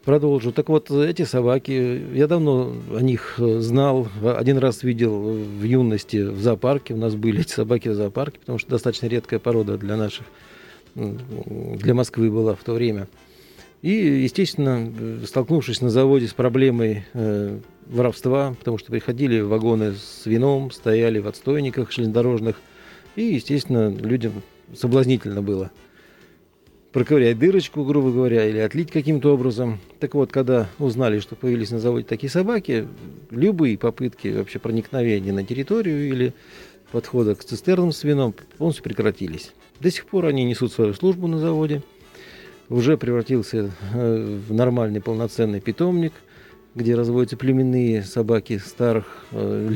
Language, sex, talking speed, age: Russian, male, 135 wpm, 40-59